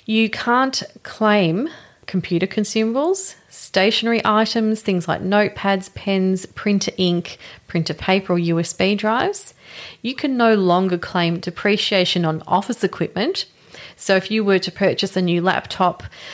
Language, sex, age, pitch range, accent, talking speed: English, female, 30-49, 170-215 Hz, Australian, 130 wpm